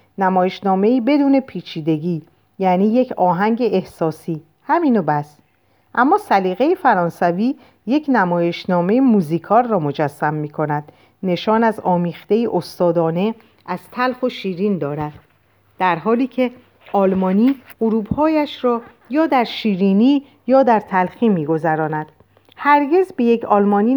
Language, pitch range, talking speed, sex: Persian, 170-250 Hz, 115 wpm, female